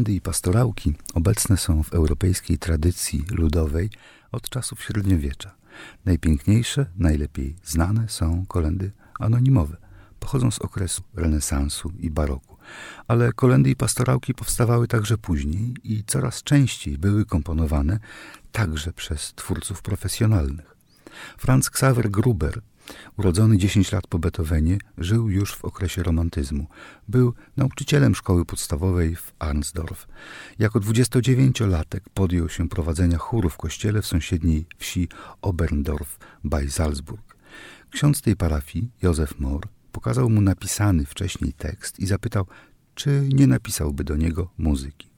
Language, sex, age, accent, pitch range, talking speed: Polish, male, 50-69, native, 80-115 Hz, 120 wpm